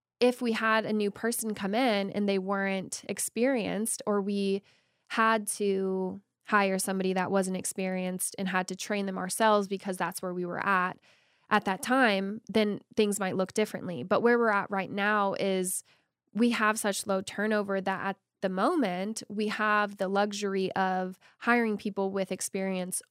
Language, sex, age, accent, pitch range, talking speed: English, female, 10-29, American, 190-215 Hz, 170 wpm